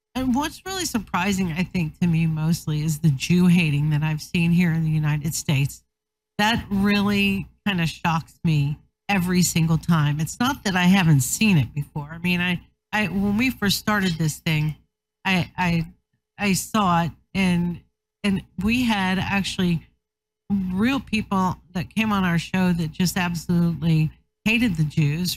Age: 50-69